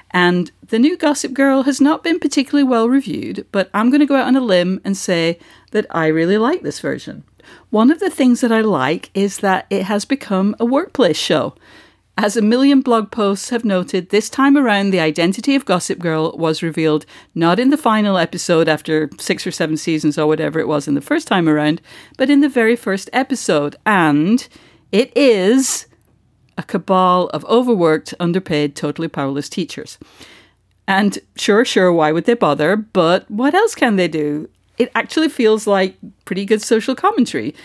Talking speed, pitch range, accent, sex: 185 wpm, 175-255 Hz, British, female